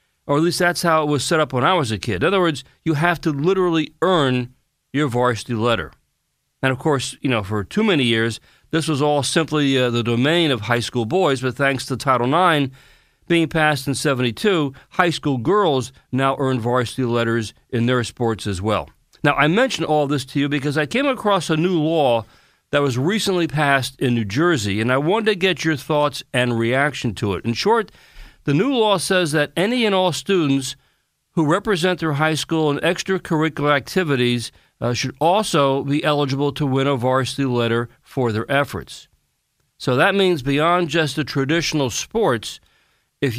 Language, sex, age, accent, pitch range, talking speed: English, male, 40-59, American, 125-170 Hz, 190 wpm